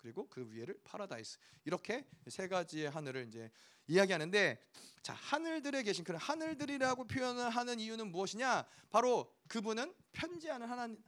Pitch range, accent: 160-245 Hz, native